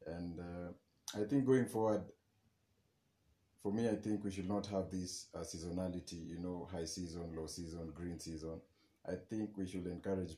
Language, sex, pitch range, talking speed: English, male, 90-105 Hz, 175 wpm